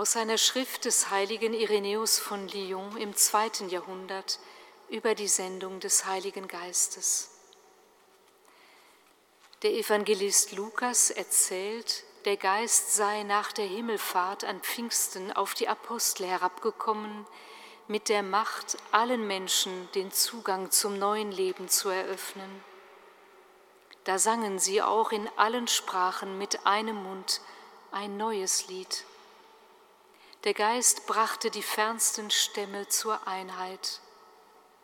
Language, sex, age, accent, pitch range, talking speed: German, female, 50-69, German, 195-235 Hz, 115 wpm